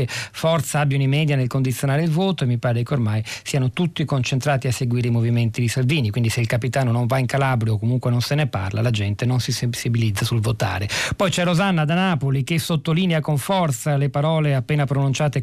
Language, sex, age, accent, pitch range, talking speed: Italian, male, 40-59, native, 120-150 Hz, 220 wpm